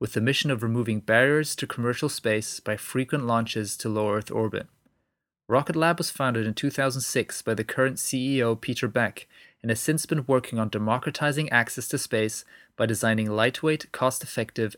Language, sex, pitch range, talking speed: English, male, 115-140 Hz, 165 wpm